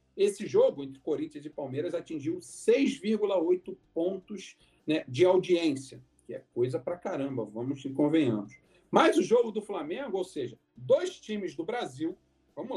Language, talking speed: Portuguese, 150 wpm